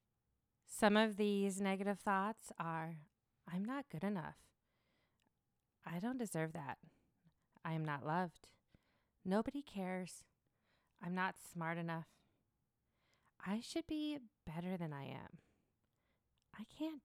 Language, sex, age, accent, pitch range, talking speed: English, female, 20-39, American, 165-230 Hz, 115 wpm